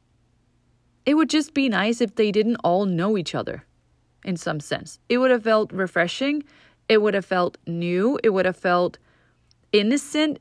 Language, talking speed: English, 175 wpm